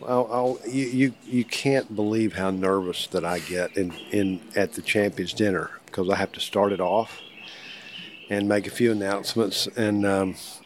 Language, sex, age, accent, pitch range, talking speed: English, male, 50-69, American, 100-125 Hz, 180 wpm